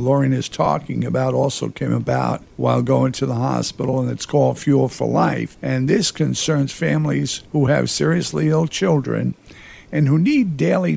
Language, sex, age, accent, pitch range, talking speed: English, male, 50-69, American, 135-175 Hz, 170 wpm